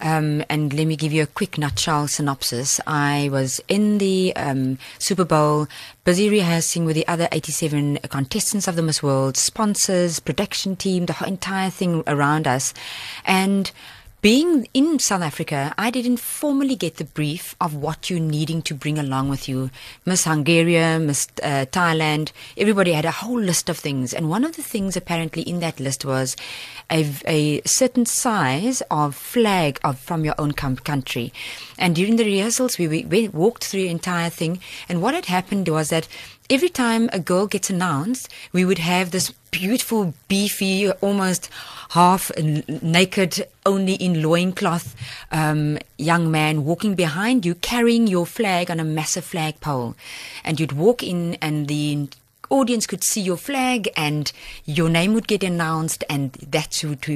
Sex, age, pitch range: female, 30-49, 150-200 Hz